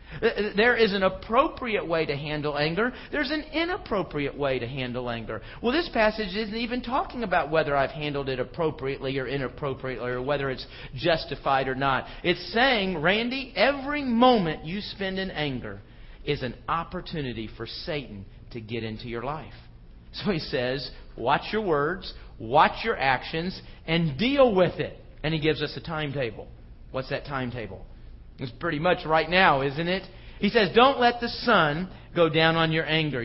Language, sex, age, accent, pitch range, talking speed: English, male, 40-59, American, 130-205 Hz, 170 wpm